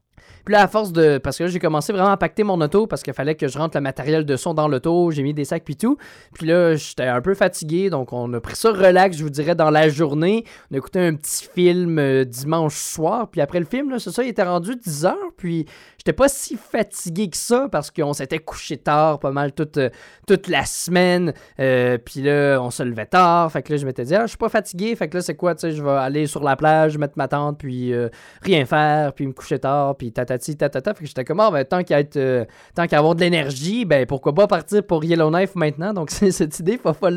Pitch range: 145-190 Hz